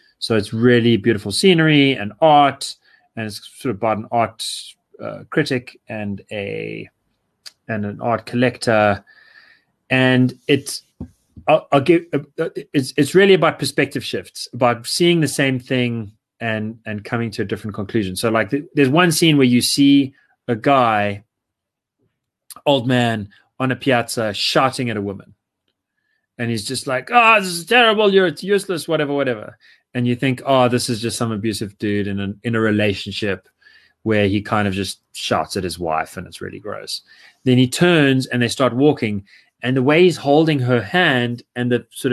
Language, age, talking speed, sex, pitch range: English, 30-49, 175 wpm, male, 115-145 Hz